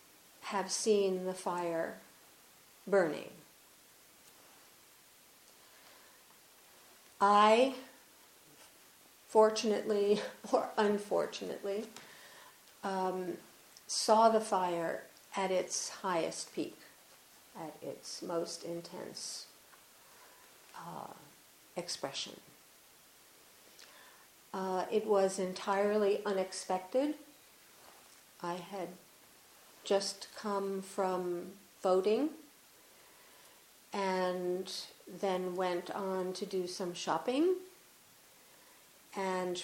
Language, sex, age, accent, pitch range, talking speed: English, female, 50-69, American, 180-210 Hz, 65 wpm